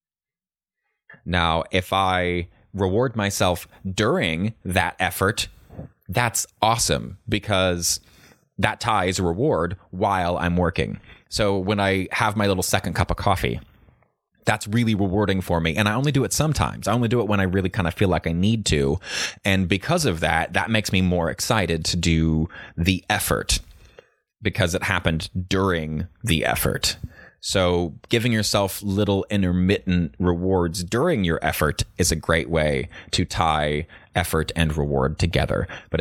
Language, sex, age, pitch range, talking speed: English, male, 20-39, 85-100 Hz, 155 wpm